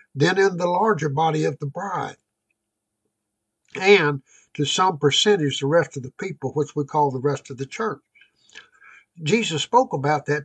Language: English